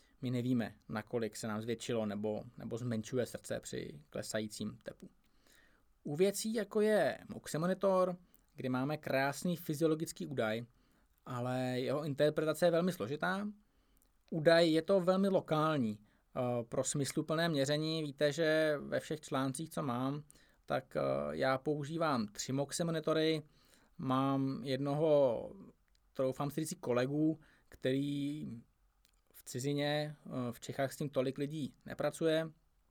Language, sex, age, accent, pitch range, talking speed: Czech, male, 20-39, native, 125-155 Hz, 125 wpm